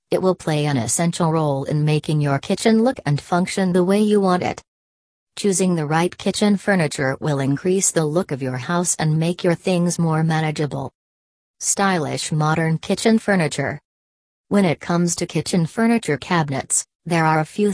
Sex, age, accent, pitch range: female, 40-59, American, 145-180 Hz